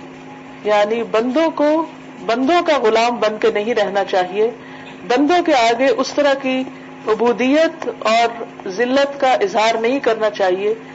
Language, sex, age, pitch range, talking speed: Urdu, female, 50-69, 215-275 Hz, 135 wpm